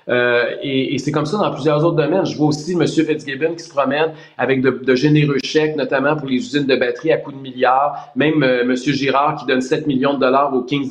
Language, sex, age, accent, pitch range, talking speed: French, male, 30-49, Canadian, 130-150 Hz, 250 wpm